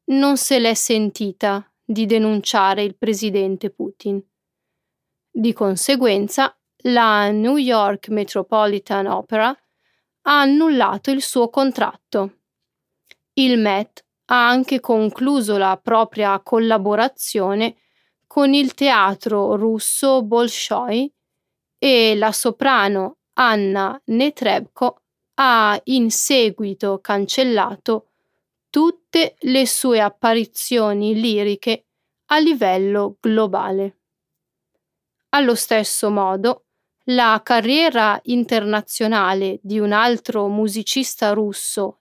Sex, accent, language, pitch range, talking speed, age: female, native, Italian, 205-250 Hz, 90 wpm, 30-49